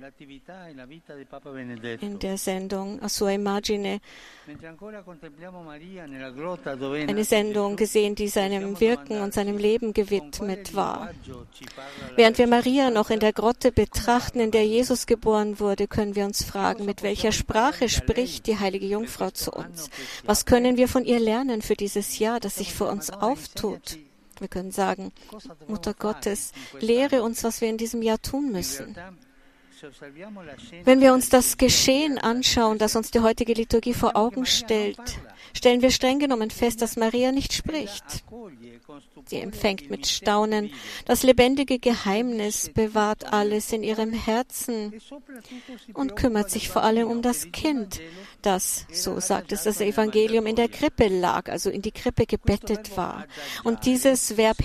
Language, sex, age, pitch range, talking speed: German, female, 50-69, 200-240 Hz, 145 wpm